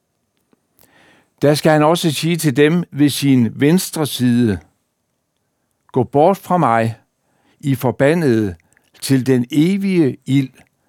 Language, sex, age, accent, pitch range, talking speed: Danish, male, 60-79, native, 120-165 Hz, 115 wpm